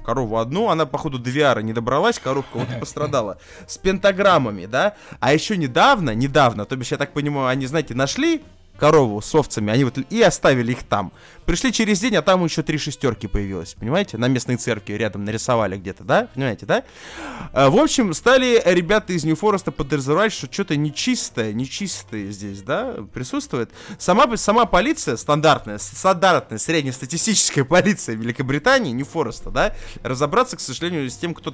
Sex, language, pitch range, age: male, Russian, 120-185 Hz, 20-39